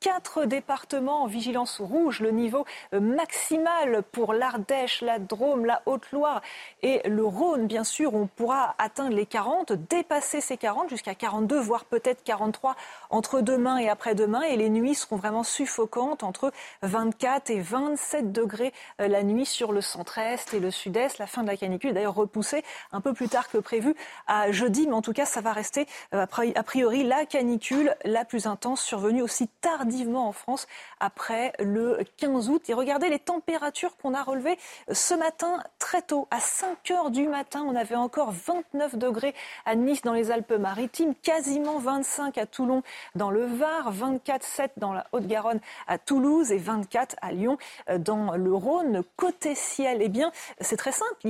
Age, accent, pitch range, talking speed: 30-49, French, 220-285 Hz, 170 wpm